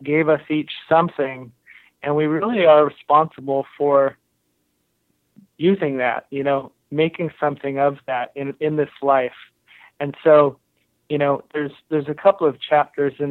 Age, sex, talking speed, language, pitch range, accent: 30-49, male, 150 wpm, English, 135-155 Hz, American